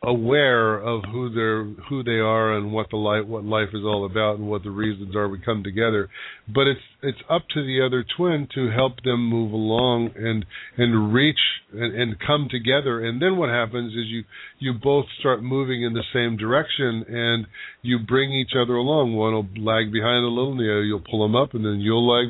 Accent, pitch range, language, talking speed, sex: American, 110-135 Hz, English, 220 wpm, male